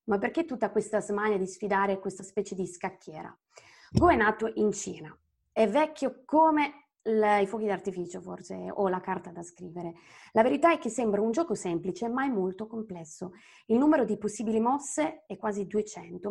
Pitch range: 185-225 Hz